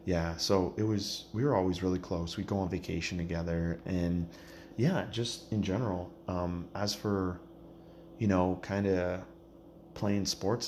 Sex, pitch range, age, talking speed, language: male, 85-100 Hz, 30-49, 155 wpm, English